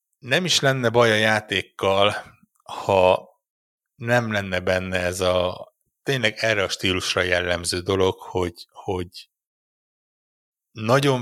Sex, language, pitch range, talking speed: male, Hungarian, 95-110 Hz, 110 wpm